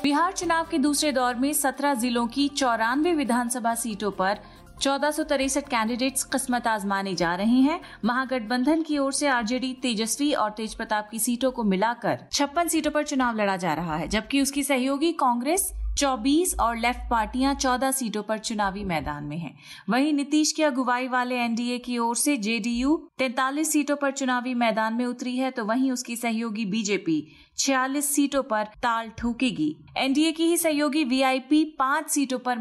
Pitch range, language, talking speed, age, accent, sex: 220-280 Hz, Hindi, 175 wpm, 30-49, native, female